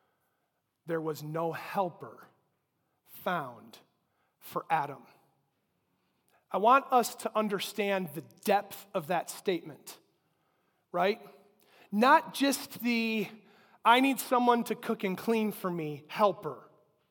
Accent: American